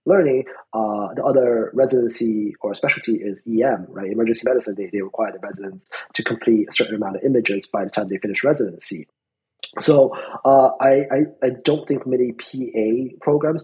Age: 20-39